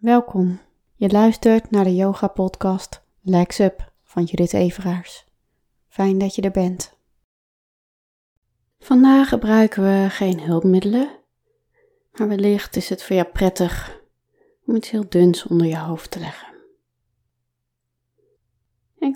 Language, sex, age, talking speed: English, female, 20-39, 120 wpm